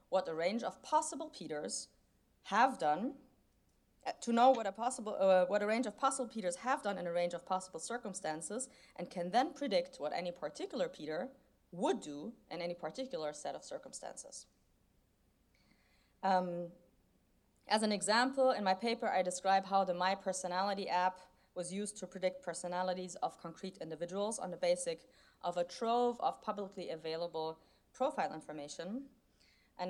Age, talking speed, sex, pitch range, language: 30-49, 155 wpm, female, 175-235 Hz, English